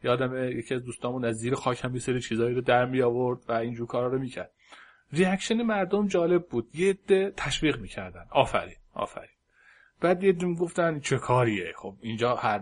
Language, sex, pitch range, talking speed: Persian, male, 115-145 Hz, 175 wpm